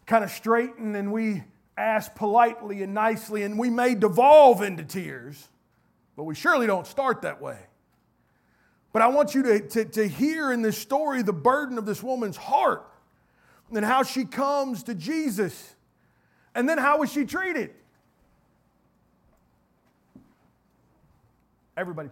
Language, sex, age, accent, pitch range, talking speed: English, male, 40-59, American, 175-265 Hz, 140 wpm